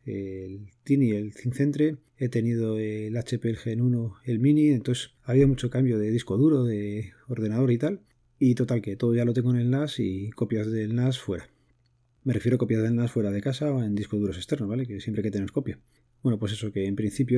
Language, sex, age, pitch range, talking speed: Spanish, male, 30-49, 110-130 Hz, 230 wpm